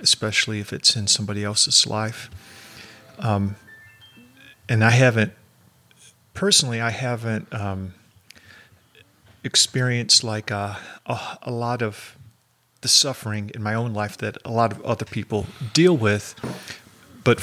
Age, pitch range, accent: 40-59, 105-125 Hz, American